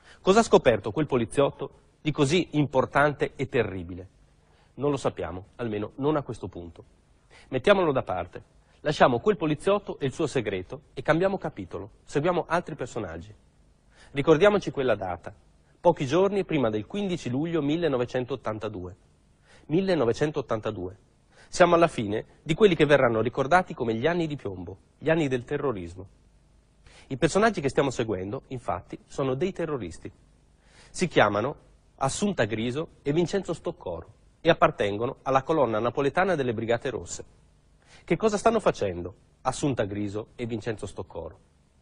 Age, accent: 30-49, native